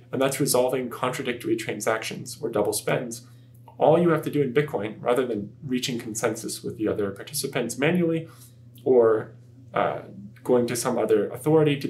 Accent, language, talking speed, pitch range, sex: American, English, 160 wpm, 120-145 Hz, male